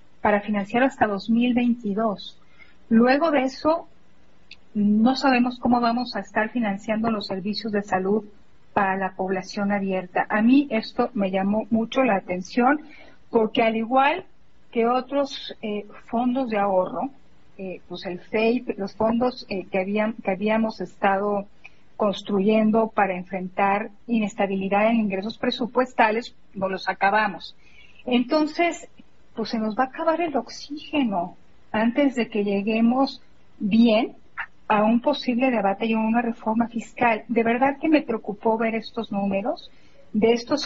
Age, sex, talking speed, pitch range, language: 40-59, female, 140 wpm, 205-255 Hz, Spanish